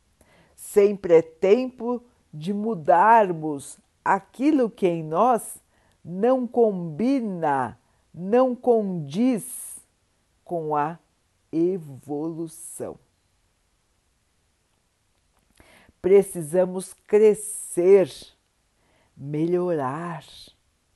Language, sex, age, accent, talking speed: Portuguese, female, 60-79, Brazilian, 55 wpm